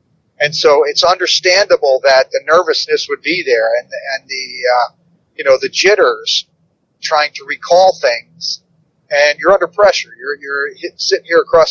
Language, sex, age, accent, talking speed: English, male, 40-59, American, 170 wpm